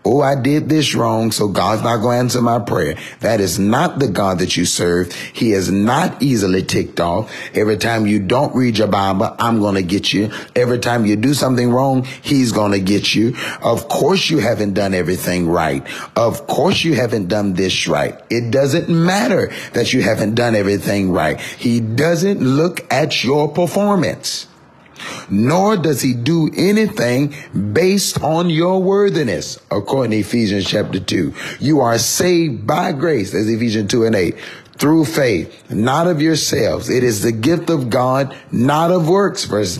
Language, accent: English, American